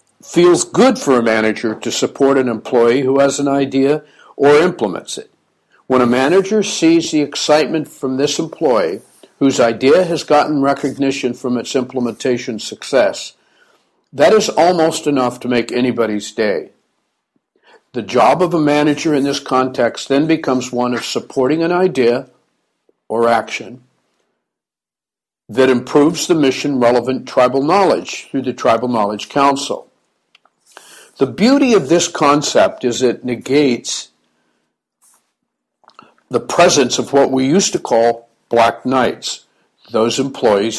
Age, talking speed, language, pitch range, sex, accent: 60-79, 130 wpm, English, 120-145 Hz, male, American